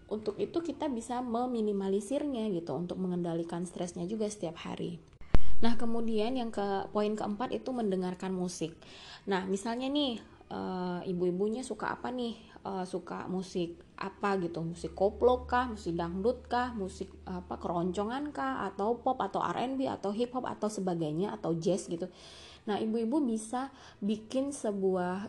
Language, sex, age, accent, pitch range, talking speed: Indonesian, female, 20-39, native, 180-225 Hz, 145 wpm